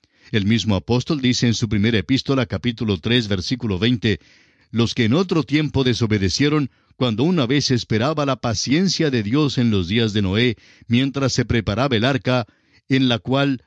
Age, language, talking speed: 60-79, French, 170 wpm